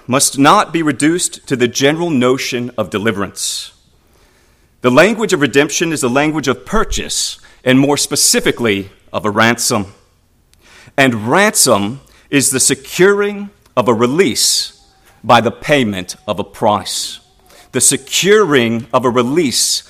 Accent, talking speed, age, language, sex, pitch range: American, 135 wpm, 40-59, English, male, 115-155 Hz